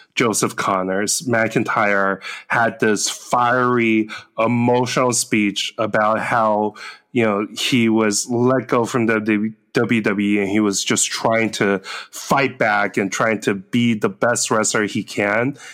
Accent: American